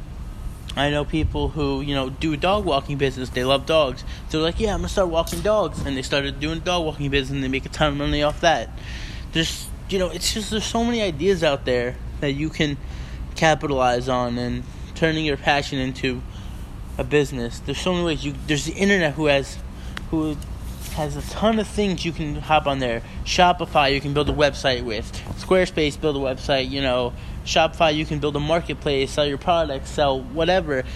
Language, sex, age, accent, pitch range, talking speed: English, male, 20-39, American, 135-165 Hz, 210 wpm